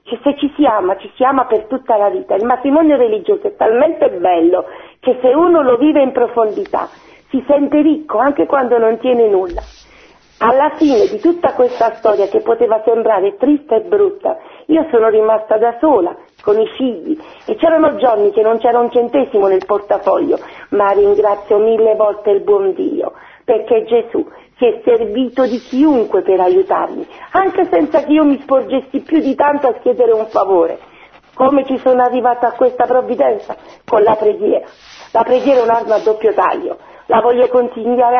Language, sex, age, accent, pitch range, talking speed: Italian, female, 50-69, native, 235-325 Hz, 175 wpm